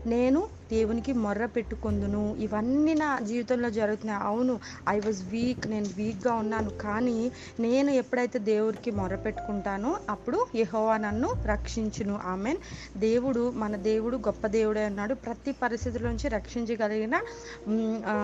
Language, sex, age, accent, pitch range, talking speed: English, female, 30-49, Indian, 210-250 Hz, 95 wpm